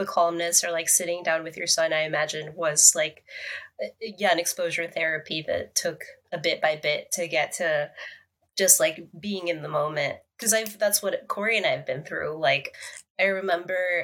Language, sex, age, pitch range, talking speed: English, female, 20-39, 170-210 Hz, 190 wpm